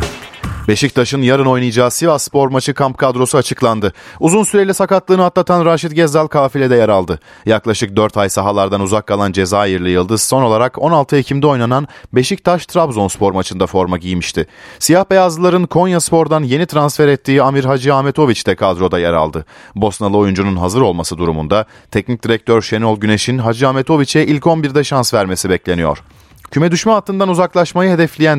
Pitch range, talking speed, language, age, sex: 100-150 Hz, 150 wpm, Turkish, 40-59, male